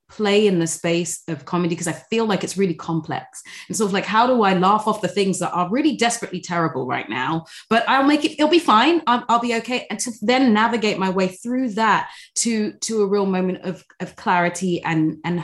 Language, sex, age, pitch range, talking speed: English, female, 20-39, 160-190 Hz, 235 wpm